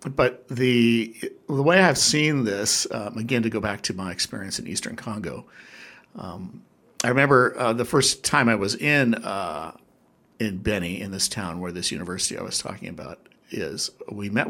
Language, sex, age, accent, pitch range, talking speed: English, male, 60-79, American, 105-130 Hz, 185 wpm